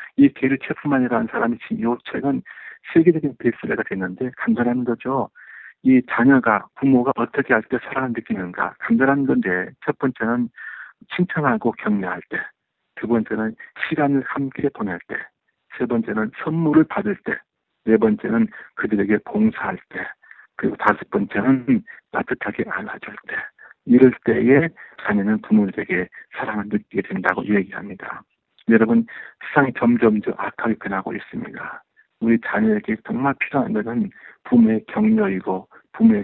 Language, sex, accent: Korean, male, native